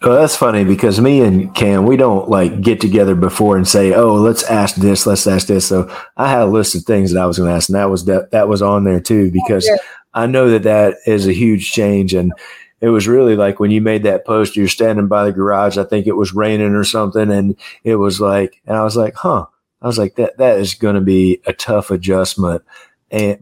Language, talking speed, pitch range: English, 250 wpm, 95-115 Hz